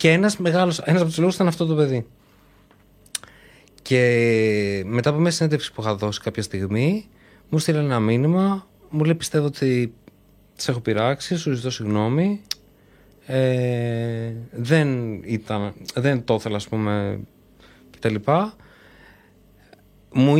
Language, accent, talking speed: Greek, native, 130 wpm